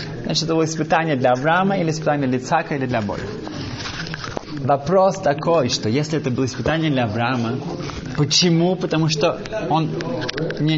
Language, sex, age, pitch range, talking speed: Russian, male, 20-39, 130-160 Hz, 150 wpm